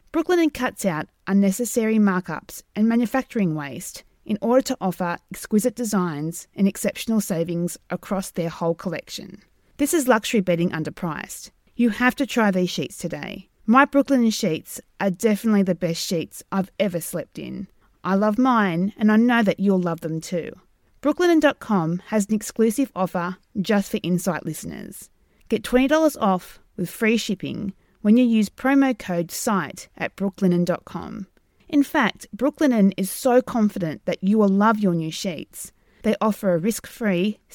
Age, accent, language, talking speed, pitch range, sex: 30-49, Australian, English, 155 wpm, 180-230 Hz, female